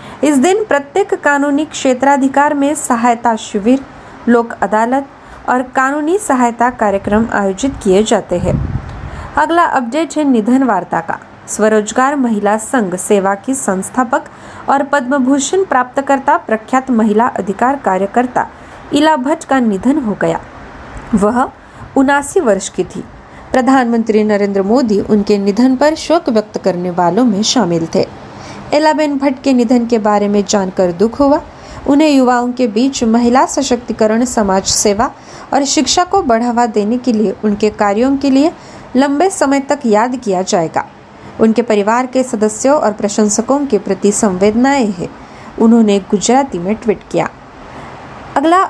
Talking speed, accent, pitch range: 140 wpm, native, 210-275 Hz